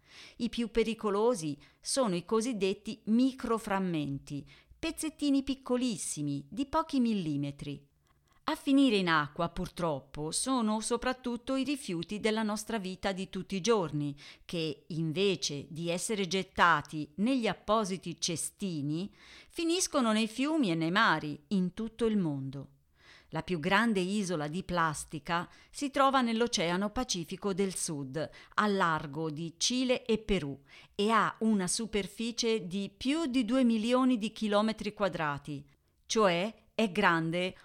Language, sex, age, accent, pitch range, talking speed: Italian, female, 40-59, native, 160-225 Hz, 125 wpm